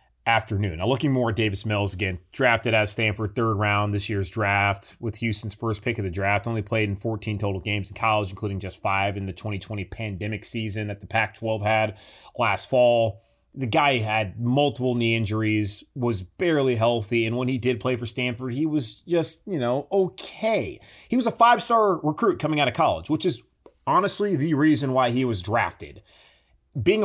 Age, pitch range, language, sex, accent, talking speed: 30-49, 105-125 Hz, English, male, American, 190 wpm